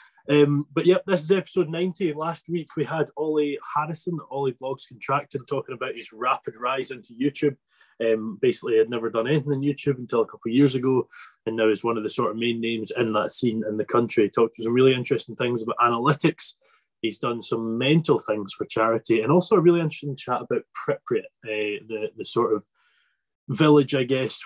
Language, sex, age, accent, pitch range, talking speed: English, male, 20-39, British, 120-160 Hz, 210 wpm